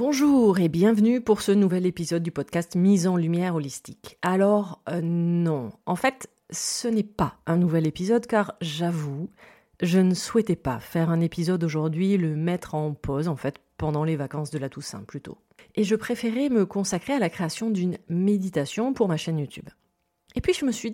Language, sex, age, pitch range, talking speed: French, female, 30-49, 160-215 Hz, 190 wpm